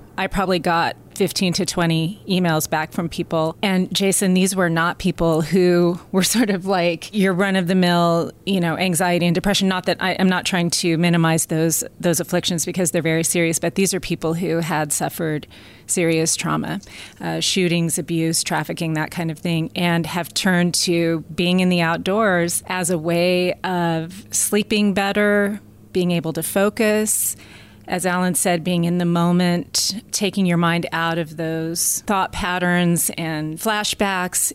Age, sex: 30-49, female